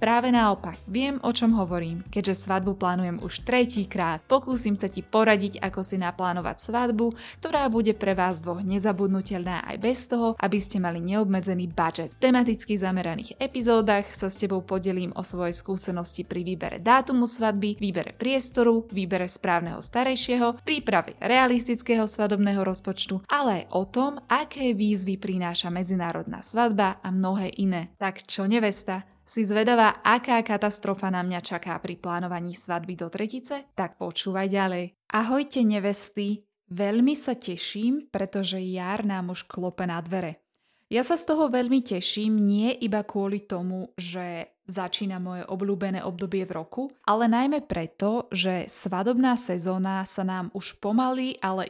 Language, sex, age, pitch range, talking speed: Slovak, female, 20-39, 180-230 Hz, 145 wpm